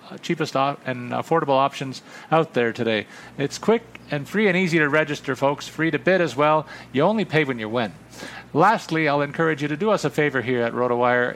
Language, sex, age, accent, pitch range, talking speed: English, male, 40-59, American, 125-170 Hz, 205 wpm